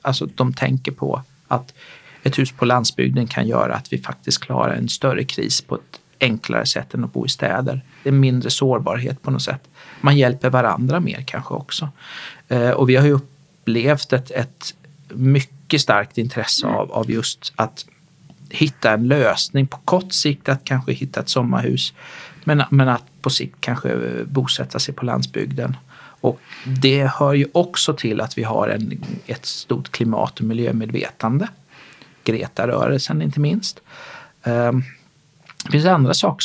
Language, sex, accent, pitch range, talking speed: Swedish, male, native, 115-145 Hz, 160 wpm